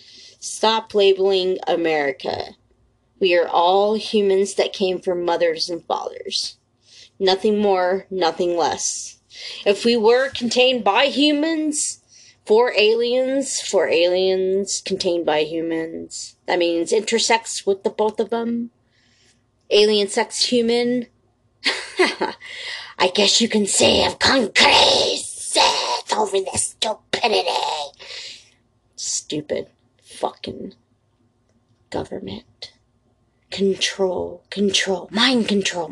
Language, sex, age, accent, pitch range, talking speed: English, female, 30-49, American, 170-250 Hz, 100 wpm